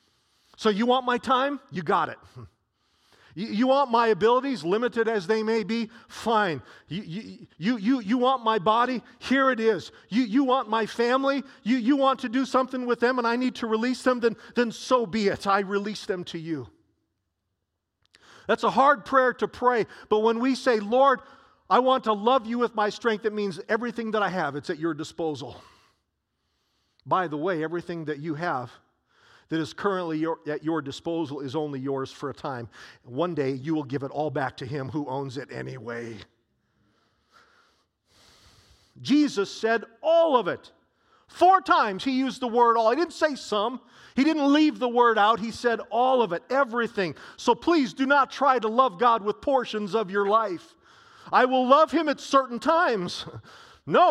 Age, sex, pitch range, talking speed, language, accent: 40-59, male, 170-255 Hz, 185 wpm, English, American